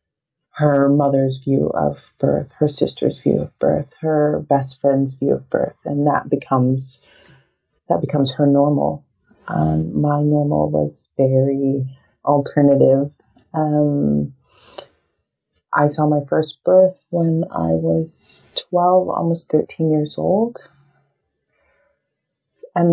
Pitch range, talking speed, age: 140-160 Hz, 115 wpm, 30-49